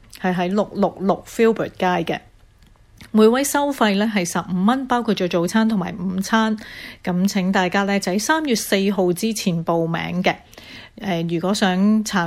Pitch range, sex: 180-220 Hz, female